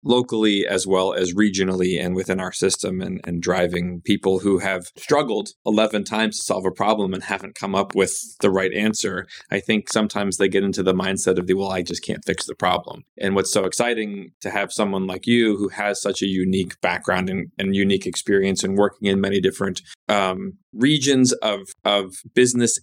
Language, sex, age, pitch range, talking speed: English, male, 20-39, 95-115 Hz, 200 wpm